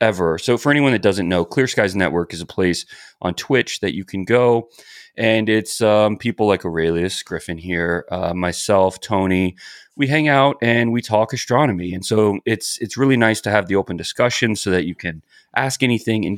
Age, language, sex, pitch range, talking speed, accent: 30-49, English, male, 90-120 Hz, 200 wpm, American